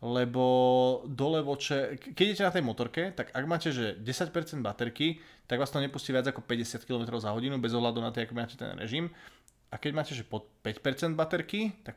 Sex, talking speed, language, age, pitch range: male, 195 wpm, Slovak, 20-39, 115-140 Hz